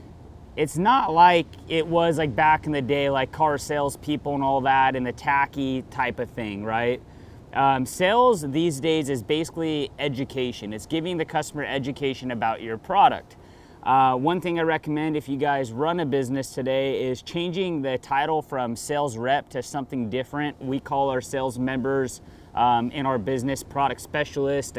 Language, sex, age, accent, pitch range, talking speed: English, male, 30-49, American, 130-155 Hz, 170 wpm